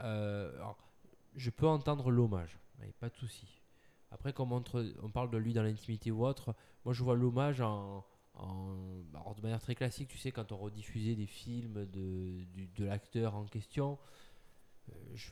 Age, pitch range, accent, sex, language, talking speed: 20-39, 105-125 Hz, French, male, French, 180 wpm